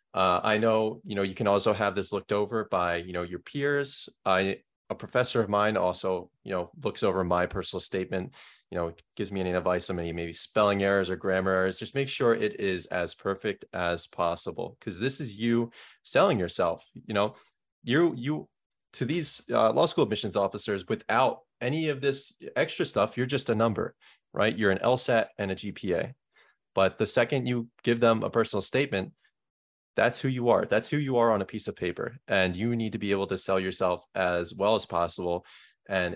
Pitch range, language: 90-115 Hz, English